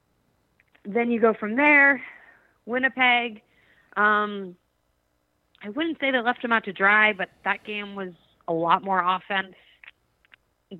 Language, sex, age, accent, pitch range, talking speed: English, female, 20-39, American, 170-210 Hz, 135 wpm